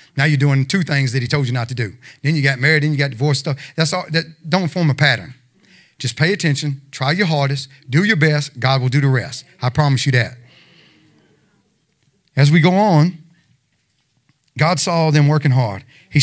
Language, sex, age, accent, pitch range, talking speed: English, male, 40-59, American, 130-165 Hz, 205 wpm